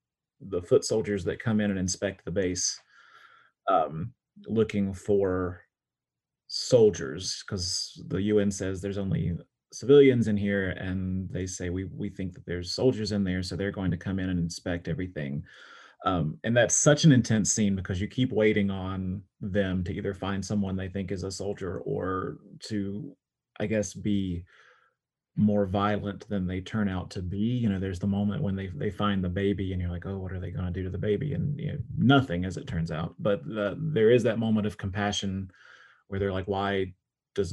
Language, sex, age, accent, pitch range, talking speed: English, male, 30-49, American, 95-110 Hz, 195 wpm